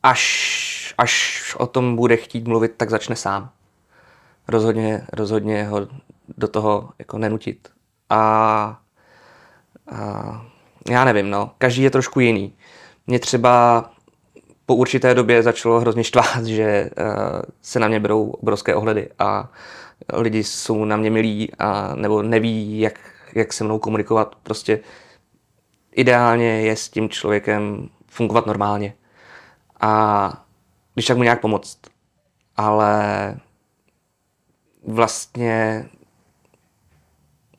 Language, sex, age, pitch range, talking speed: Czech, male, 20-39, 105-120 Hz, 115 wpm